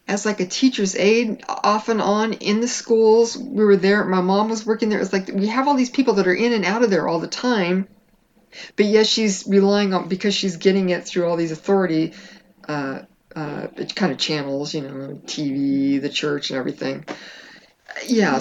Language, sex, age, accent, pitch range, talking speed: English, female, 50-69, American, 145-195 Hz, 200 wpm